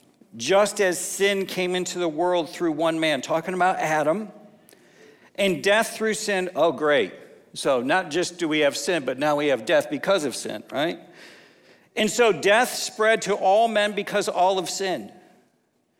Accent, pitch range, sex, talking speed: American, 185-235 Hz, male, 175 wpm